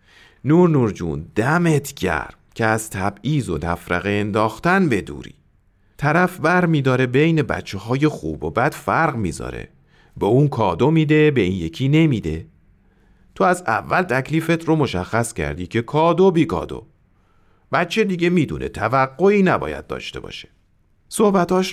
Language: Persian